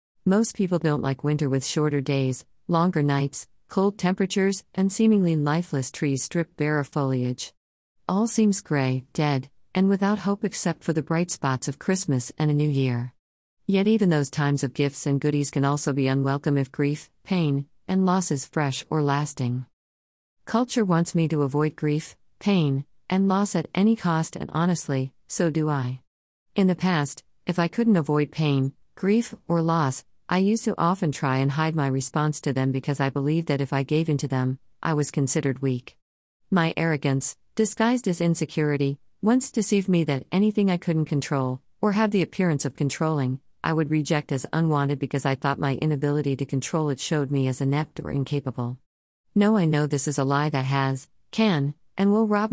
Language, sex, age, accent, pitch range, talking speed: English, female, 50-69, American, 135-170 Hz, 185 wpm